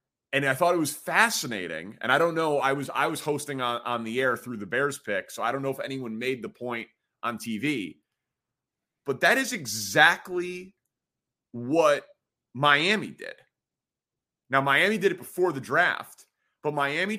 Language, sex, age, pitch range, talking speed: English, male, 30-49, 130-165 Hz, 175 wpm